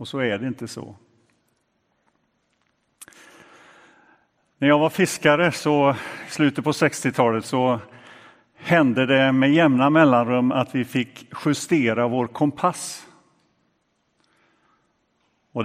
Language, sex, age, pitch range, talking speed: Swedish, male, 50-69, 115-145 Hz, 105 wpm